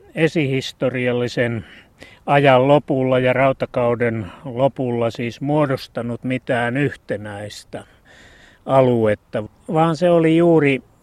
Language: Finnish